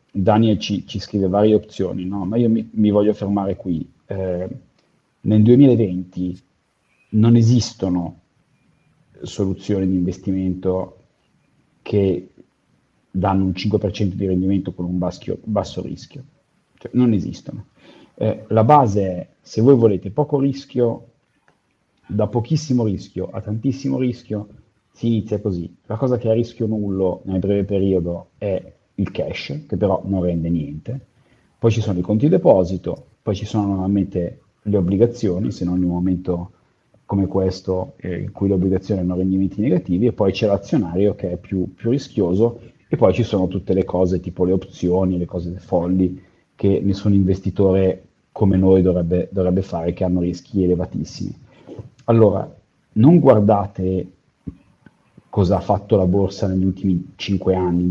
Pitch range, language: 90-110 Hz, Italian